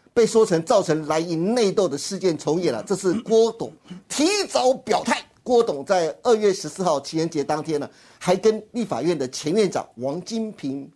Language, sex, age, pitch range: Chinese, male, 50-69, 160-230 Hz